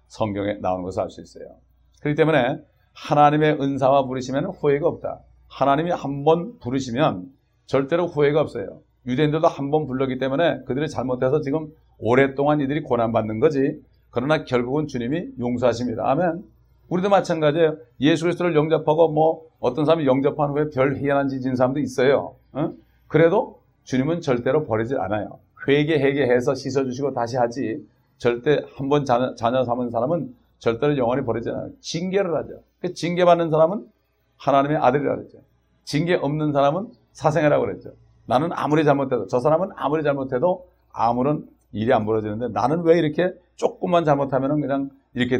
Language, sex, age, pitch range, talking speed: English, male, 40-59, 125-155 Hz, 130 wpm